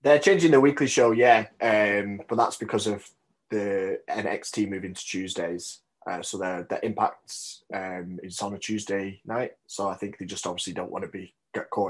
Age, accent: 20-39, British